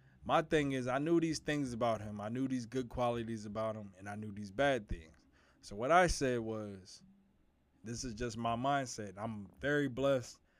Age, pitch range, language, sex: 20-39, 90-130 Hz, English, male